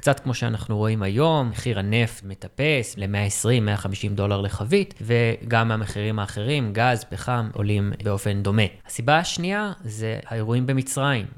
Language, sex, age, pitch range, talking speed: Hebrew, male, 20-39, 105-135 Hz, 125 wpm